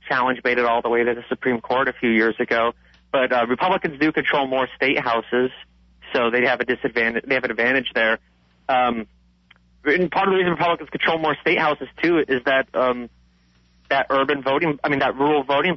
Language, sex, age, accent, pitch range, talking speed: English, male, 30-49, American, 100-145 Hz, 210 wpm